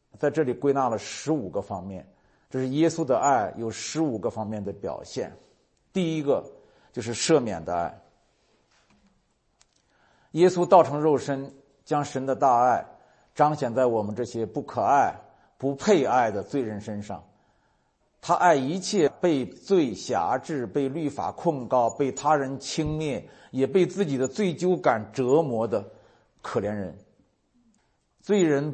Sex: male